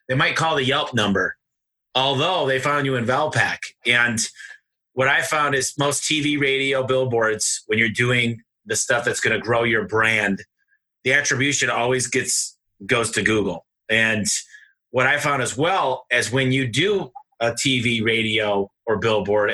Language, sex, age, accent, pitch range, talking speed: English, male, 30-49, American, 115-135 Hz, 165 wpm